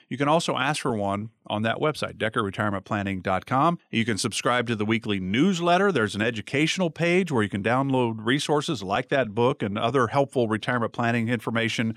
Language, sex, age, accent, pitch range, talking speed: English, male, 50-69, American, 110-155 Hz, 175 wpm